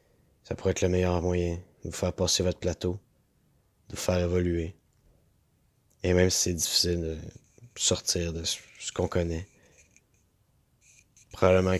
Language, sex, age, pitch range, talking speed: French, male, 20-39, 85-95 Hz, 140 wpm